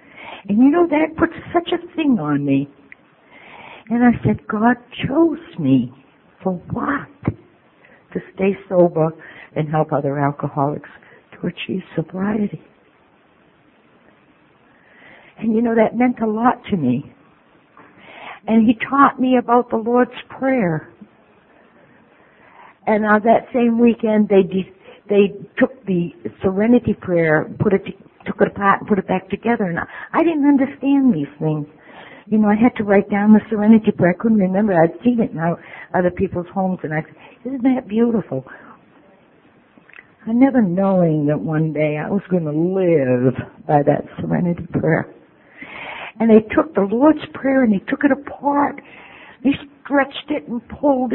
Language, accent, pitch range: English, American, 160-245 Hz